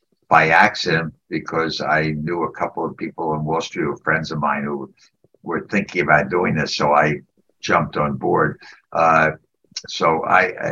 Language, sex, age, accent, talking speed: English, male, 60-79, American, 175 wpm